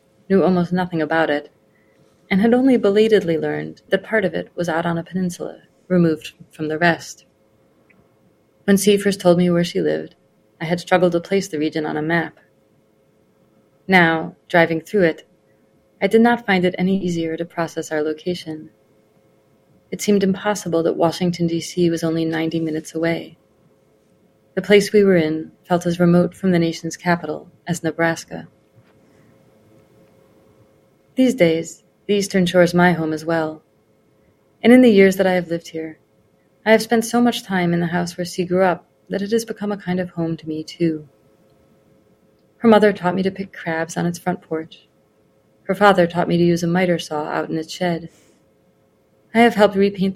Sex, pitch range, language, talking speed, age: female, 155-185 Hz, English, 180 wpm, 30-49